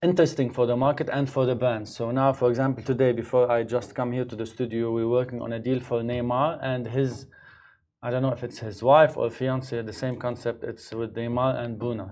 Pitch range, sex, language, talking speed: 120-140 Hz, male, Arabic, 235 wpm